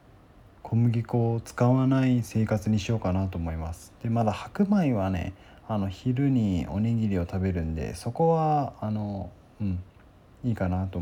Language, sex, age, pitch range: Japanese, male, 20-39, 95-120 Hz